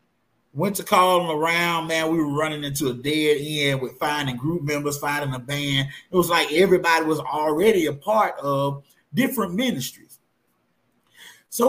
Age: 30-49